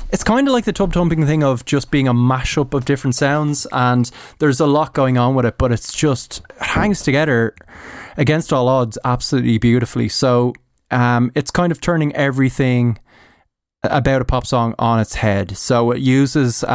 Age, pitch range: 20-39, 120-145 Hz